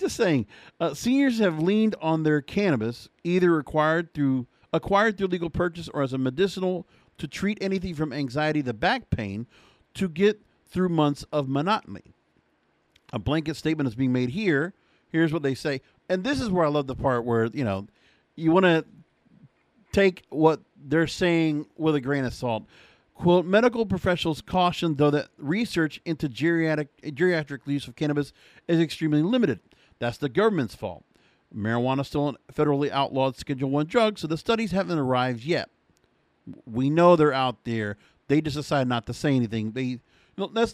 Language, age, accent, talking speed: English, 50-69, American, 175 wpm